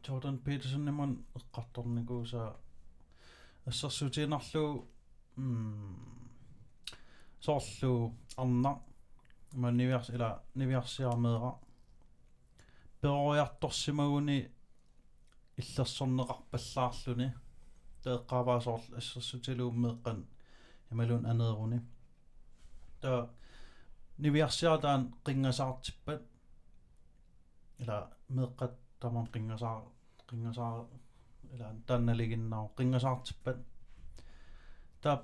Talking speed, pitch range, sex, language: 80 wpm, 115-135 Hz, male, Danish